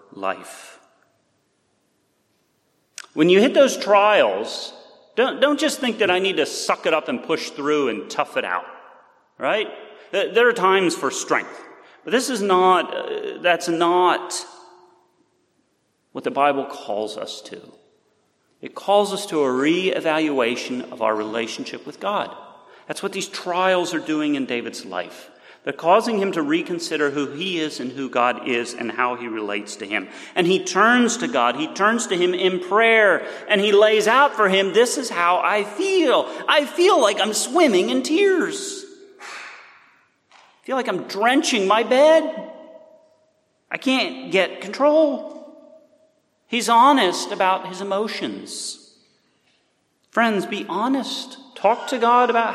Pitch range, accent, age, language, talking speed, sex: 180-295 Hz, American, 40-59, English, 150 wpm, male